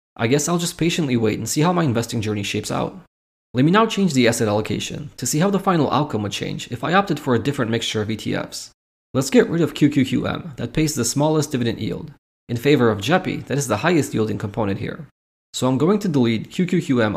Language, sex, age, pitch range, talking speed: English, male, 20-39, 110-150 Hz, 230 wpm